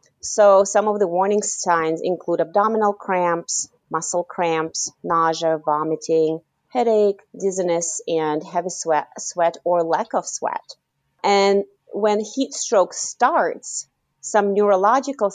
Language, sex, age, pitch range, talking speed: English, female, 30-49, 165-205 Hz, 115 wpm